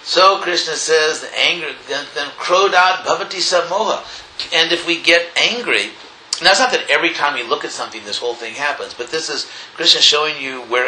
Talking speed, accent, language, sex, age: 200 wpm, American, English, male, 50-69